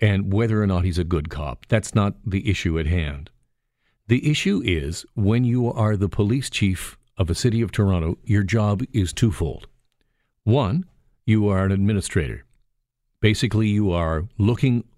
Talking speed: 165 wpm